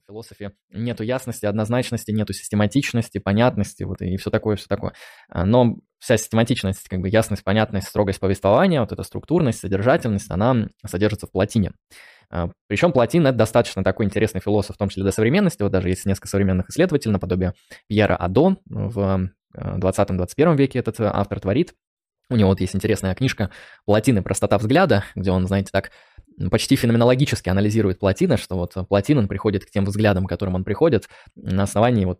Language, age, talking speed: Russian, 20-39, 160 wpm